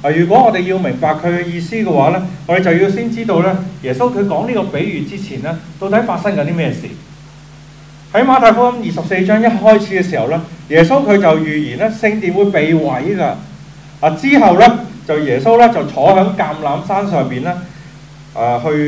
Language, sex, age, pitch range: Chinese, male, 30-49, 150-215 Hz